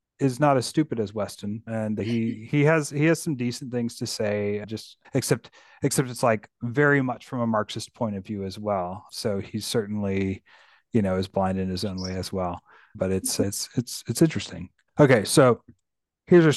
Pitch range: 110-150 Hz